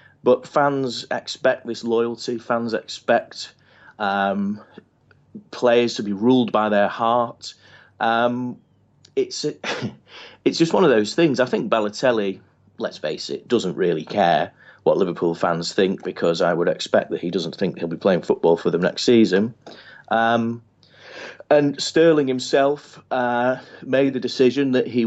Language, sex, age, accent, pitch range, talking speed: English, male, 30-49, British, 105-130 Hz, 150 wpm